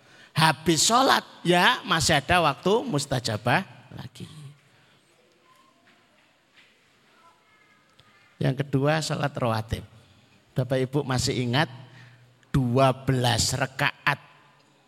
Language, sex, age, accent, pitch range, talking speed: Indonesian, male, 50-69, native, 135-210 Hz, 75 wpm